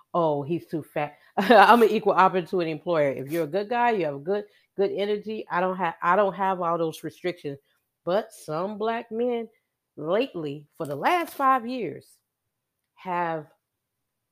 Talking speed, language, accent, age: 165 wpm, English, American, 40-59